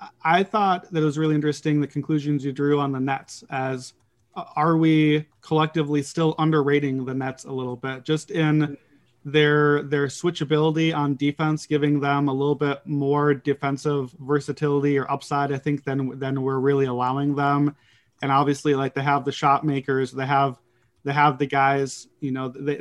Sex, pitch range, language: male, 135-155 Hz, English